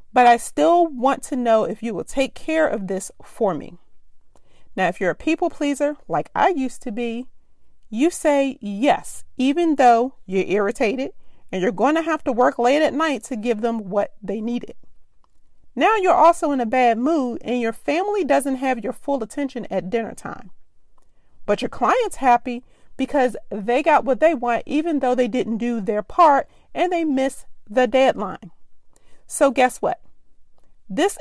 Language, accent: English, American